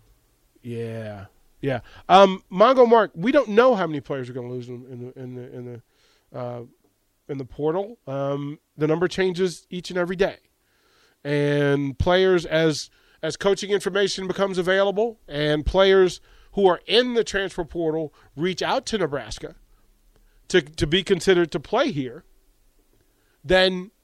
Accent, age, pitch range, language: American, 40-59, 145-190 Hz, English